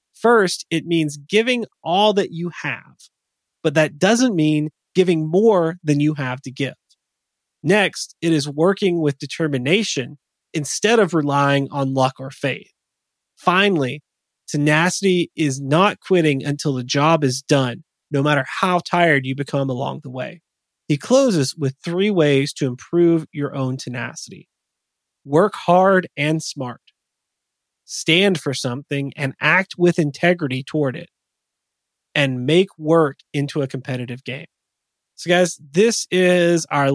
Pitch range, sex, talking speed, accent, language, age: 135-175 Hz, male, 140 wpm, American, English, 30-49